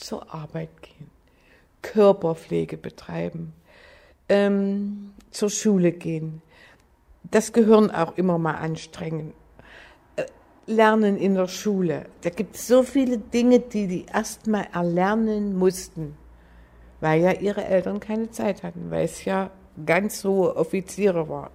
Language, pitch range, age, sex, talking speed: German, 160-205 Hz, 60-79, female, 130 wpm